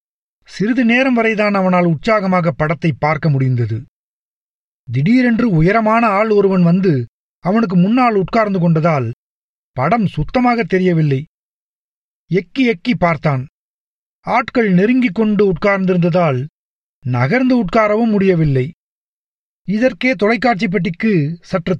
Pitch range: 155-225 Hz